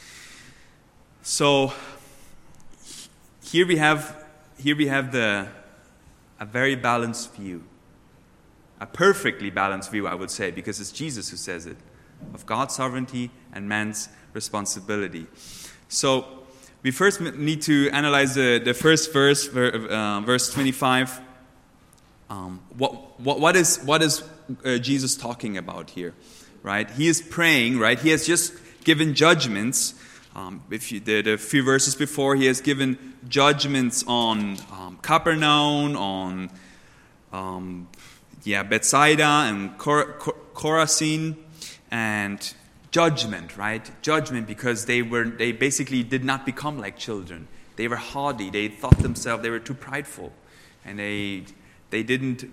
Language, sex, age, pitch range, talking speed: English, male, 20-39, 105-145 Hz, 135 wpm